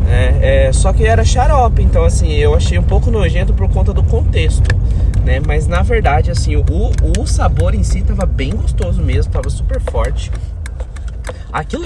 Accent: Brazilian